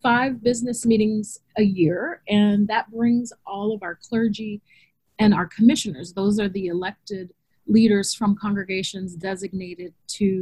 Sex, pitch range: female, 175-215 Hz